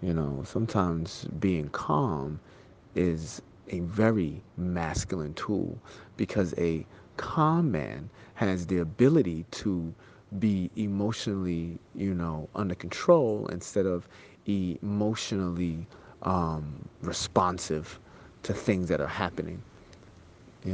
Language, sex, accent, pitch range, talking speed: English, male, American, 85-110 Hz, 100 wpm